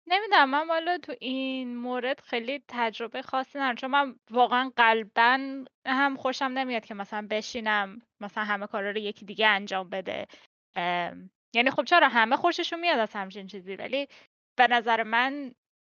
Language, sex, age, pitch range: Persian, female, 10-29, 215-265 Hz